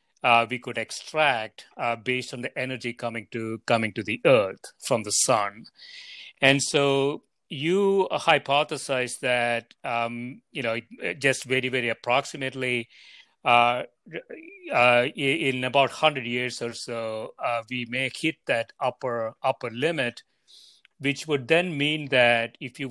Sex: male